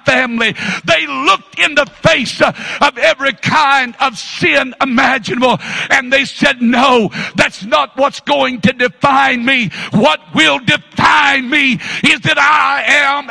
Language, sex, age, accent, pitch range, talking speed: English, male, 60-79, American, 210-275 Hz, 140 wpm